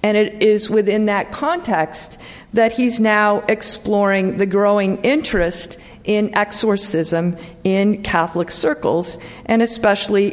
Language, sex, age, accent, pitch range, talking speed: English, female, 50-69, American, 190-225 Hz, 115 wpm